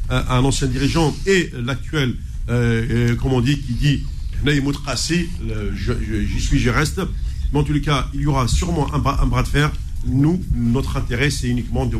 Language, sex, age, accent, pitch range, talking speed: French, male, 50-69, French, 110-140 Hz, 195 wpm